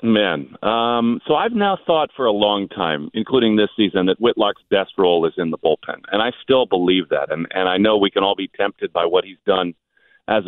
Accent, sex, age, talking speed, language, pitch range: American, male, 40-59, 230 wpm, English, 110-135 Hz